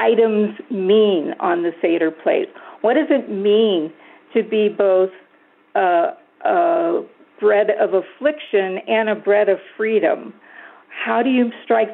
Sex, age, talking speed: female, 50-69, 135 wpm